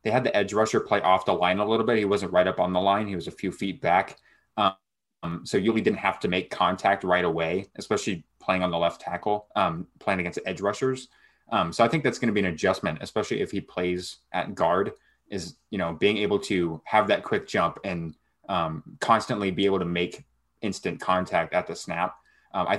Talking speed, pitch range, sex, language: 225 wpm, 90-105 Hz, male, English